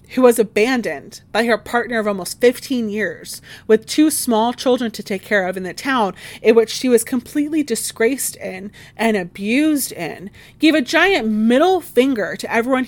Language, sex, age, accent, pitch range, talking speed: English, female, 30-49, American, 180-225 Hz, 175 wpm